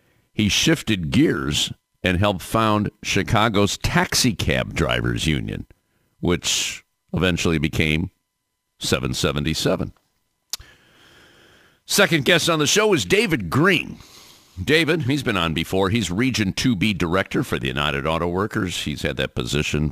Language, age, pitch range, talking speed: English, 50-69, 75-110 Hz, 125 wpm